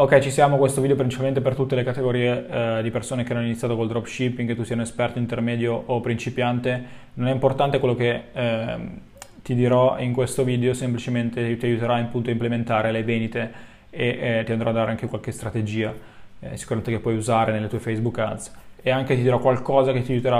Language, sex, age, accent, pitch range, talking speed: Italian, male, 20-39, native, 115-130 Hz, 210 wpm